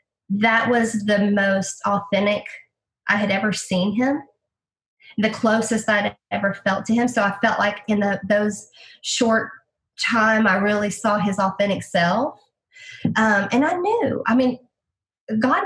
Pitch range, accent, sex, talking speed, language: 195-230 Hz, American, female, 150 wpm, English